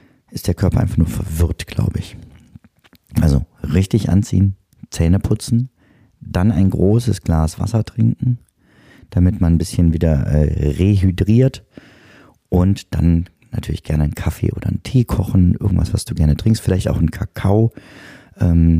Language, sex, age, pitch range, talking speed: German, male, 40-59, 90-115 Hz, 145 wpm